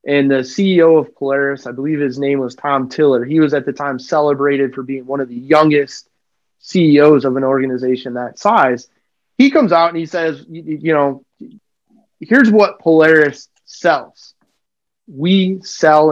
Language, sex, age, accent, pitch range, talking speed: English, male, 30-49, American, 140-180 Hz, 165 wpm